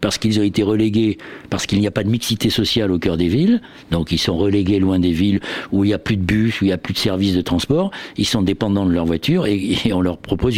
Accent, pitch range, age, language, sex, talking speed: French, 90-115 Hz, 60-79, French, male, 285 wpm